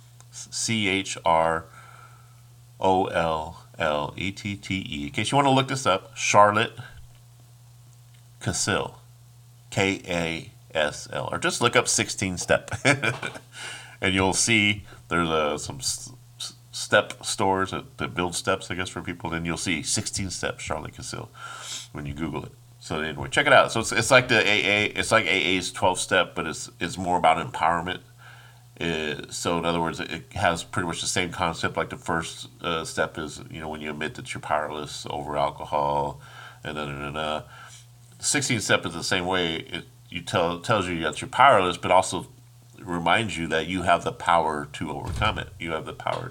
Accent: American